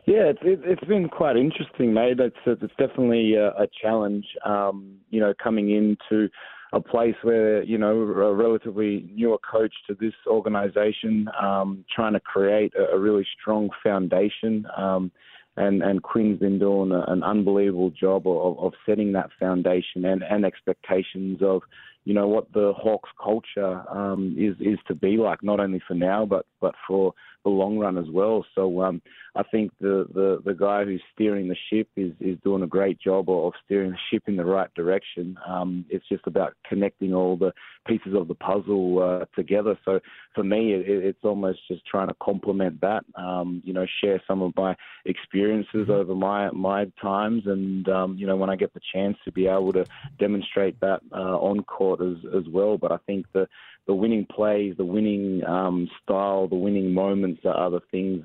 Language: English